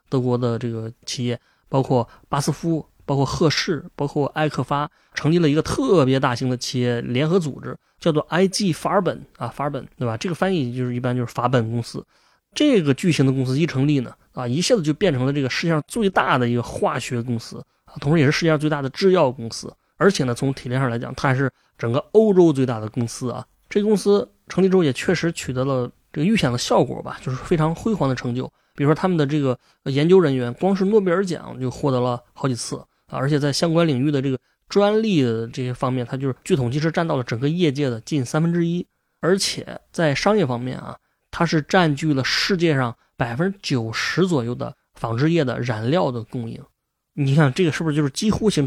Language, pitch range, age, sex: Chinese, 125-170 Hz, 20-39, male